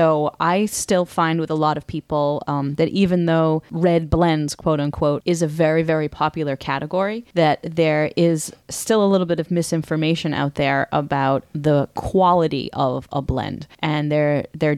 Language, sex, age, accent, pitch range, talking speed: English, female, 30-49, American, 150-170 Hz, 175 wpm